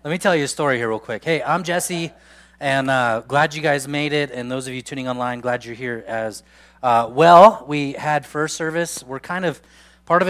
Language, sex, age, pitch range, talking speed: English, male, 20-39, 115-150 Hz, 235 wpm